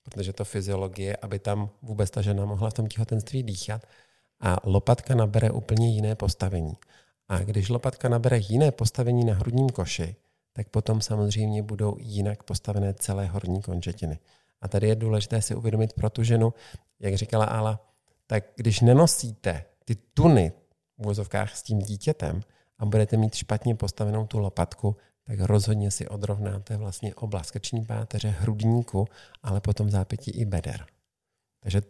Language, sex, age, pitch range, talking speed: Czech, male, 50-69, 100-115 Hz, 150 wpm